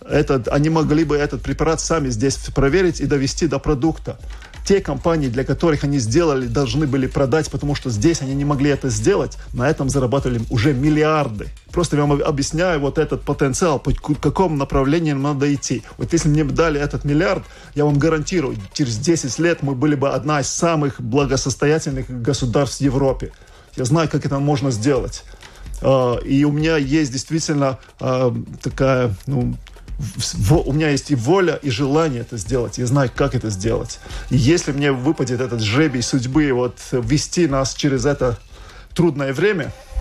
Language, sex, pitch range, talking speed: Russian, male, 130-150 Hz, 160 wpm